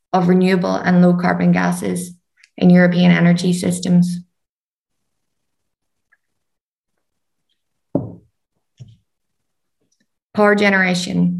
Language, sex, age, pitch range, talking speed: Slovak, female, 20-39, 170-185 Hz, 65 wpm